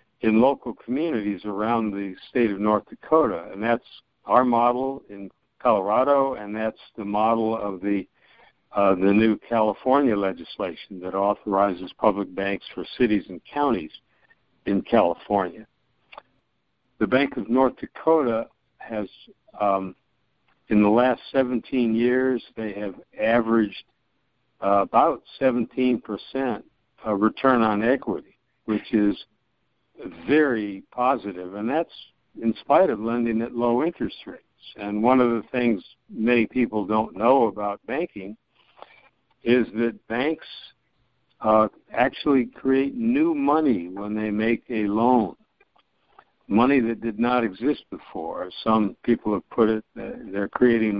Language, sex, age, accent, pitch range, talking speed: English, male, 60-79, American, 105-125 Hz, 130 wpm